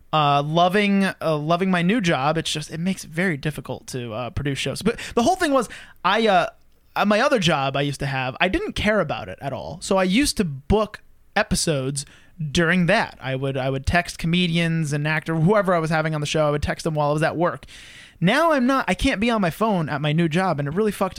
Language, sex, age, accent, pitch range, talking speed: English, male, 20-39, American, 150-210 Hz, 250 wpm